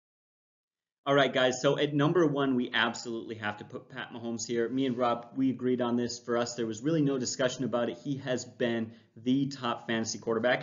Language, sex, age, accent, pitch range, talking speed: English, male, 30-49, American, 115-140 Hz, 215 wpm